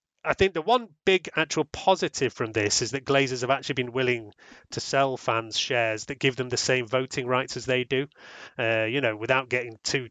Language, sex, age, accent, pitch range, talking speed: English, male, 30-49, British, 115-135 Hz, 215 wpm